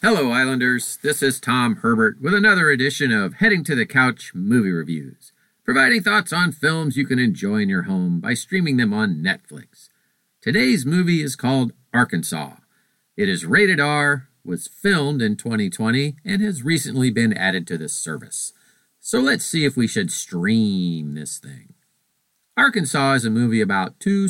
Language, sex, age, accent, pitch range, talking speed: English, male, 50-69, American, 110-175 Hz, 165 wpm